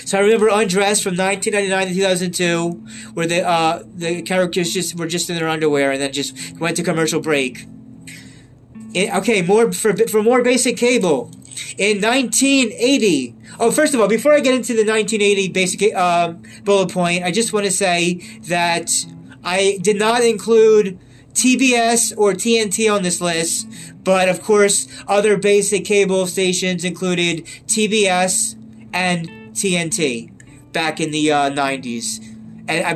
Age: 30-49